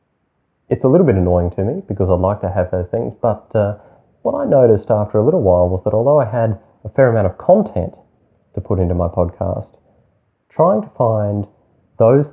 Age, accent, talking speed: 30-49, Australian, 205 wpm